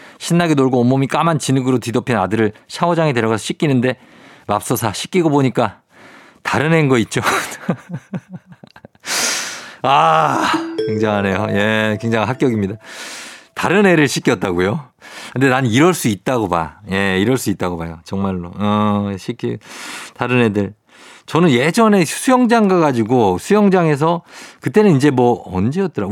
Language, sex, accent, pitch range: Korean, male, native, 115-185 Hz